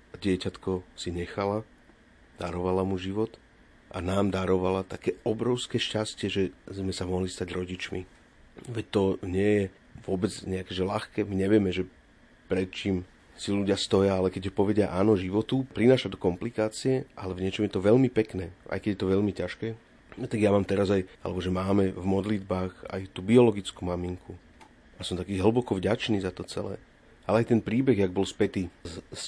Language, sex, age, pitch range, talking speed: Slovak, male, 40-59, 95-110 Hz, 175 wpm